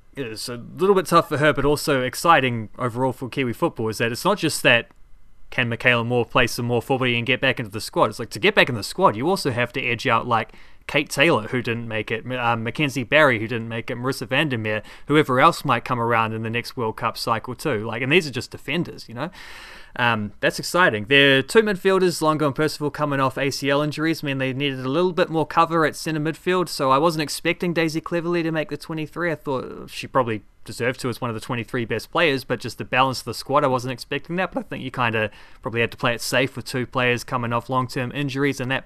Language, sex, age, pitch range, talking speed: English, male, 20-39, 115-150 Hz, 255 wpm